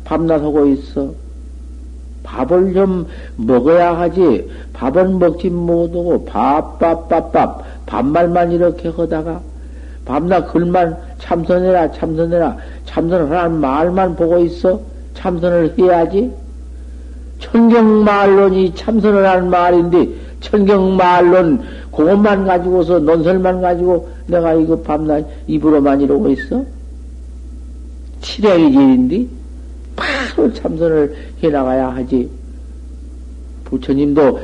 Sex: male